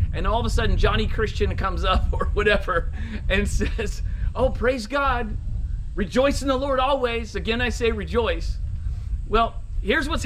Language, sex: English, male